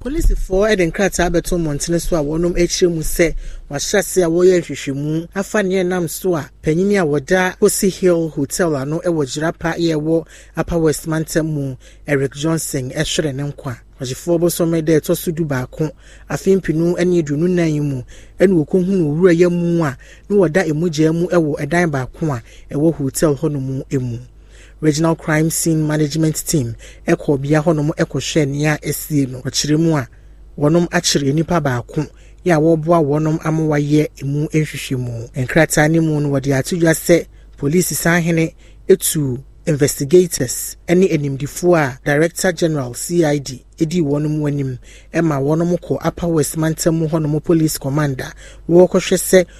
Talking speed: 150 wpm